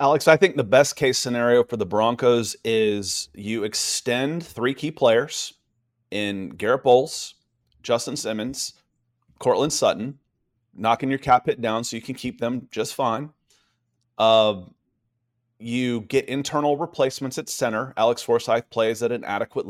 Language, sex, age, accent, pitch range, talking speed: English, male, 30-49, American, 110-135 Hz, 145 wpm